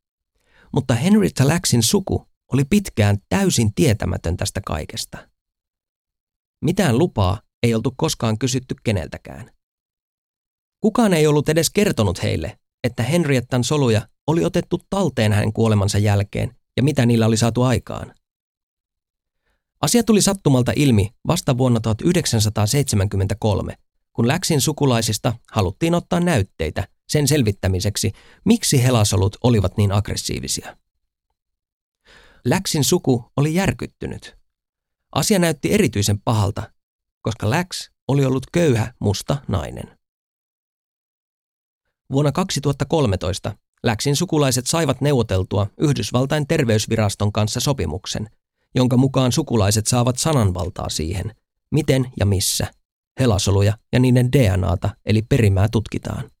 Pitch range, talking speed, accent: 100-145 Hz, 105 wpm, native